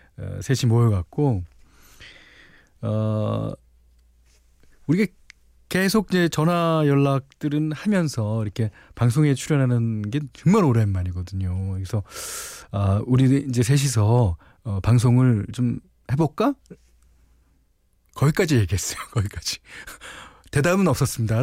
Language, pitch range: Korean, 100-140 Hz